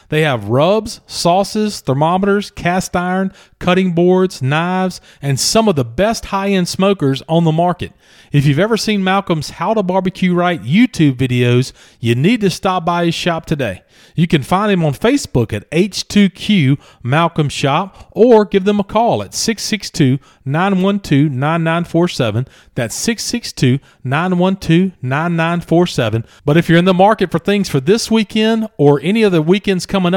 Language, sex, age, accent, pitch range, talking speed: English, male, 40-59, American, 135-190 Hz, 150 wpm